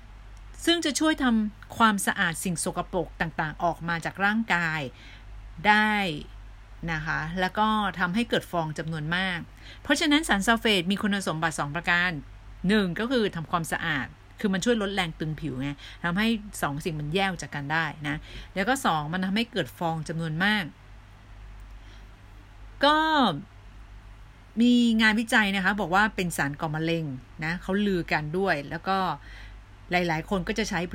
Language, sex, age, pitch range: Thai, female, 30-49, 150-205 Hz